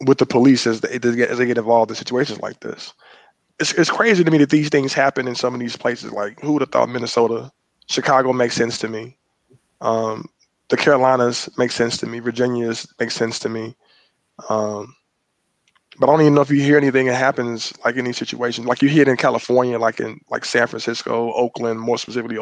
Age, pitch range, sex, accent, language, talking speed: 20-39, 115-130 Hz, male, American, English, 210 wpm